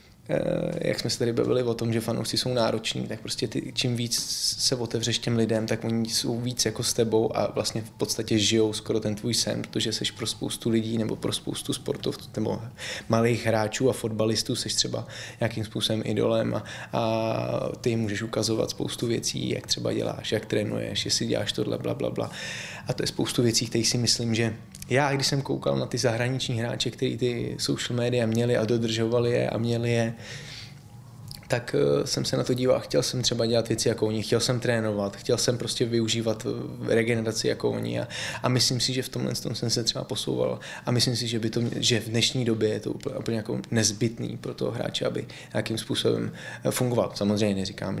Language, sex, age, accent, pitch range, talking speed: Czech, male, 20-39, native, 110-125 Hz, 205 wpm